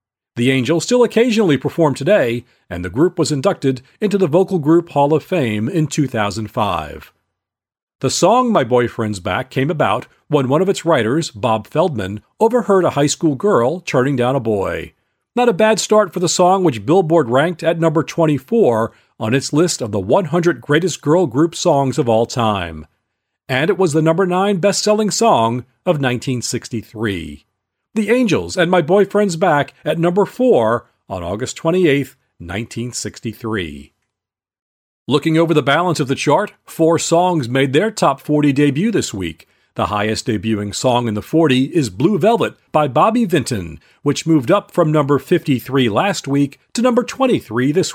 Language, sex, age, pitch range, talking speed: English, male, 40-59, 115-175 Hz, 165 wpm